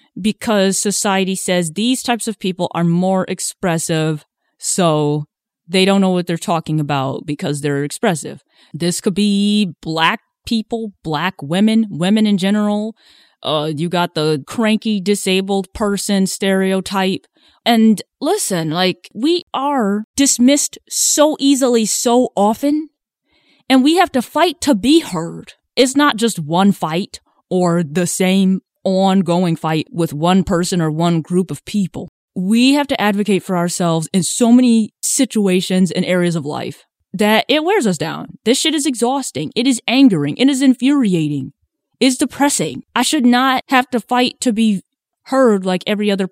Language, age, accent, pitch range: English, 20-39, American, 180-245 Hz